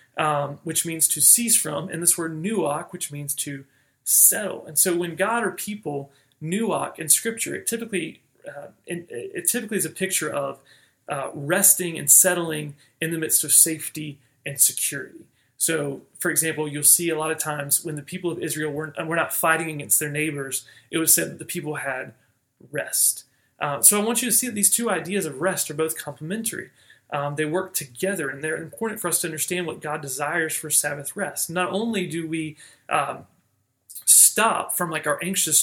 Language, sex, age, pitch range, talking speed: English, male, 30-49, 145-185 Hz, 195 wpm